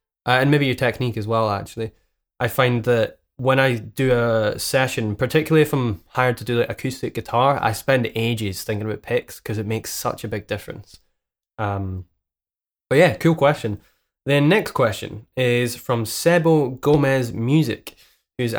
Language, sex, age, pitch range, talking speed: English, male, 20-39, 110-135 Hz, 170 wpm